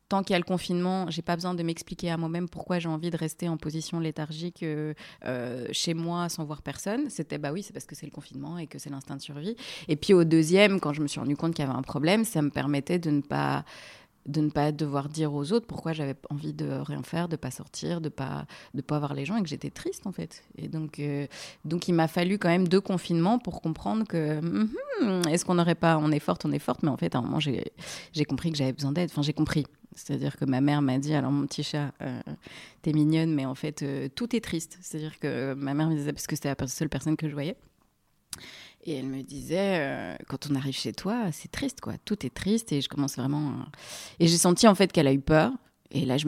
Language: French